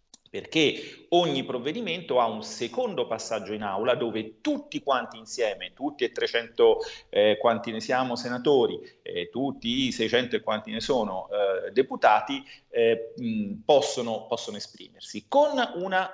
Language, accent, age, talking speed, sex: Italian, native, 30-49, 140 wpm, male